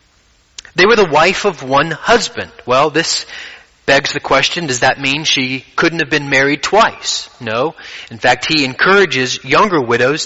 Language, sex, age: English, male, 30-49